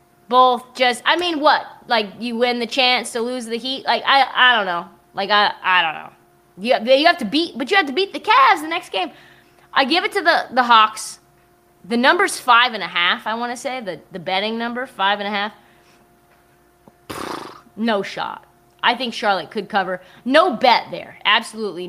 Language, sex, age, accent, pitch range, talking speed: English, female, 20-39, American, 205-295 Hz, 205 wpm